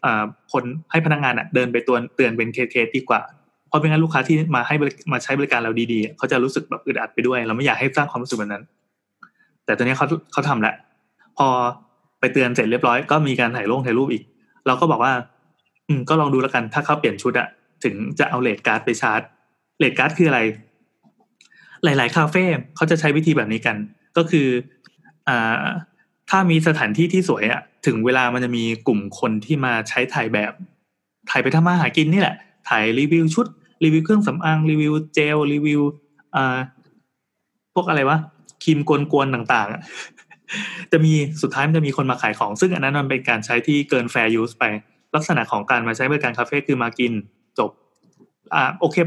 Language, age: Thai, 20-39